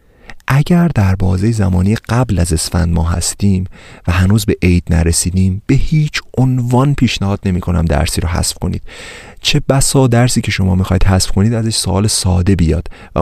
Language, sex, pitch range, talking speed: Persian, male, 90-110 Hz, 175 wpm